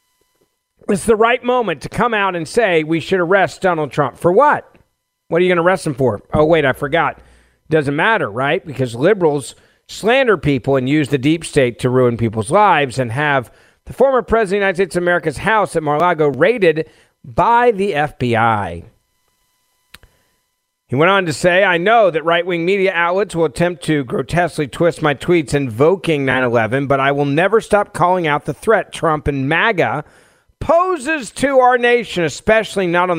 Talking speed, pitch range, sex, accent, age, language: 185 wpm, 130-185 Hz, male, American, 50-69, English